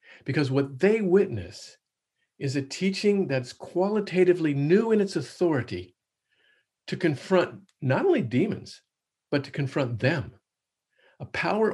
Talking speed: 125 wpm